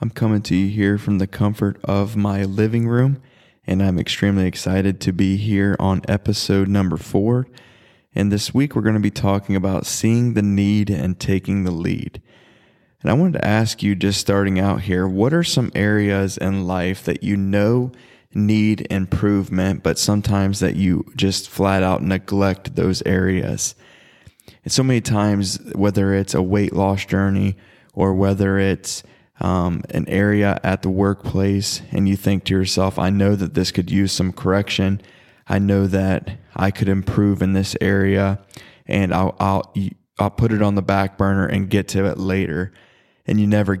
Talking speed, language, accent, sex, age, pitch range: 175 wpm, English, American, male, 20-39, 95-105 Hz